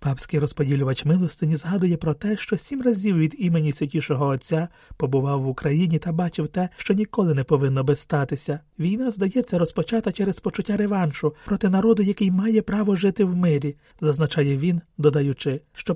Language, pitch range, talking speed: Ukrainian, 150-190 Hz, 160 wpm